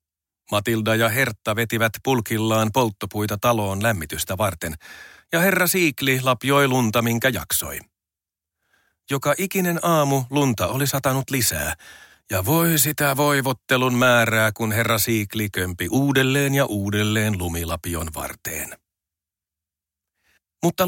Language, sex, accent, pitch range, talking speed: Finnish, male, native, 105-140 Hz, 110 wpm